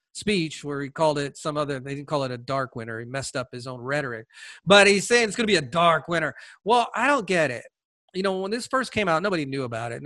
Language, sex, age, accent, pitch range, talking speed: English, male, 40-59, American, 135-205 Hz, 275 wpm